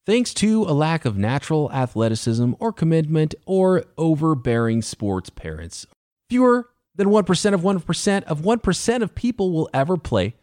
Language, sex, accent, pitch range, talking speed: English, male, American, 120-185 Hz, 145 wpm